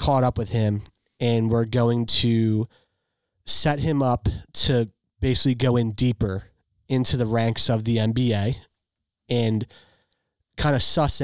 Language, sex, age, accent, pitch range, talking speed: English, male, 30-49, American, 110-130 Hz, 140 wpm